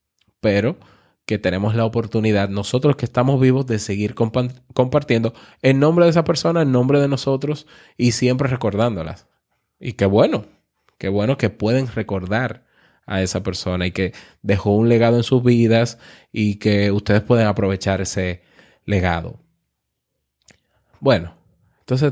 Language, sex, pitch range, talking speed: Spanish, male, 100-125 Hz, 140 wpm